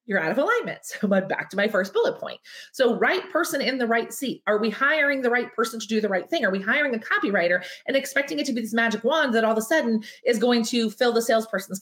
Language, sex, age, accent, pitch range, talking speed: English, female, 30-49, American, 200-265 Hz, 275 wpm